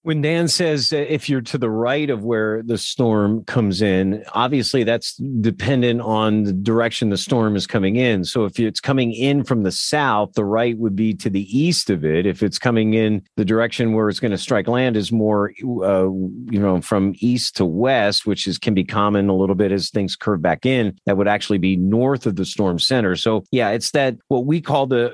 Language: English